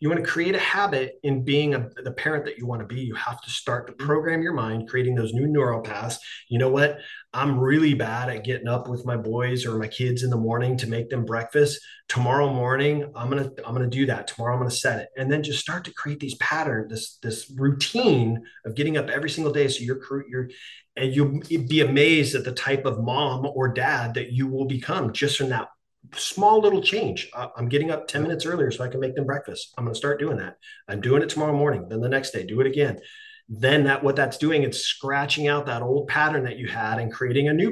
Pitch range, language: 120-145 Hz, English